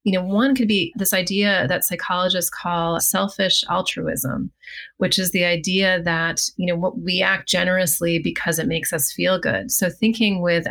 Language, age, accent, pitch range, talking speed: English, 30-49, American, 165-185 Hz, 175 wpm